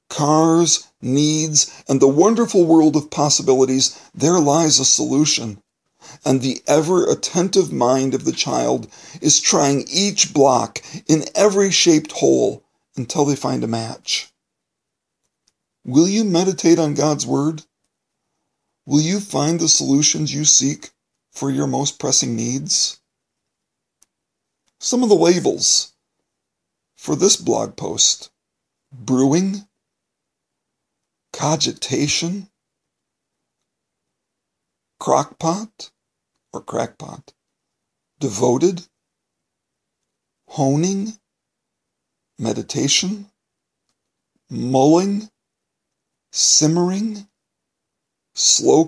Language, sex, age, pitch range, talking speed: English, male, 40-59, 135-180 Hz, 85 wpm